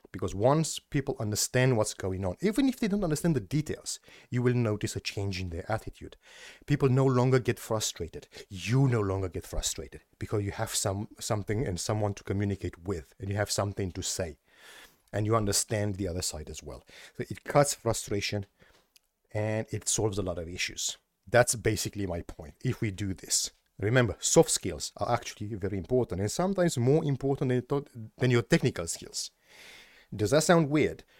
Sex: male